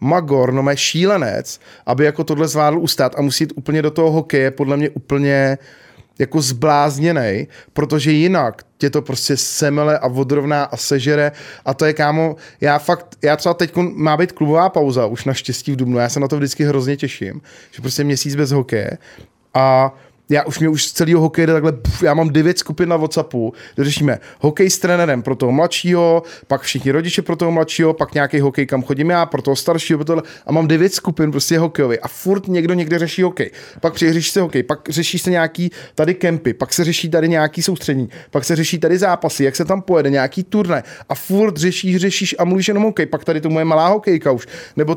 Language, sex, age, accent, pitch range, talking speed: Czech, male, 20-39, native, 140-170 Hz, 205 wpm